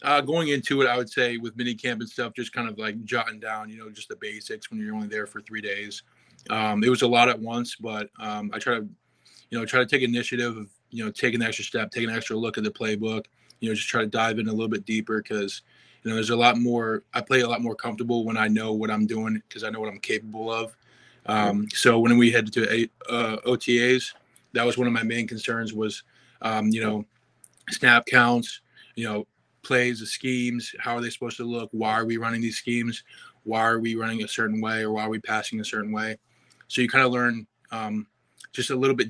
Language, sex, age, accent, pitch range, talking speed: English, male, 20-39, American, 110-120 Hz, 250 wpm